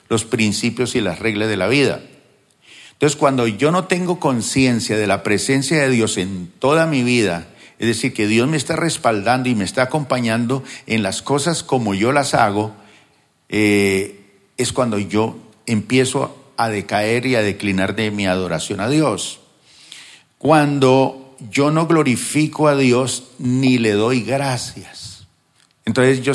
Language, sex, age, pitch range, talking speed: Spanish, male, 50-69, 105-140 Hz, 155 wpm